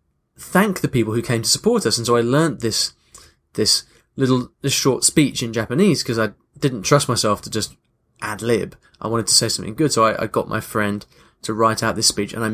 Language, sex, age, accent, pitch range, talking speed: English, male, 20-39, British, 110-150 Hz, 230 wpm